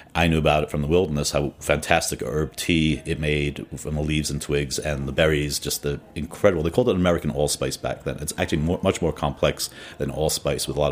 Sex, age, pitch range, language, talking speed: male, 40-59, 75-85 Hz, English, 225 wpm